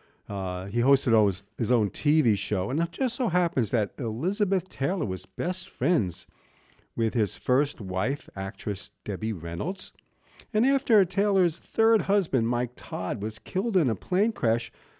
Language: English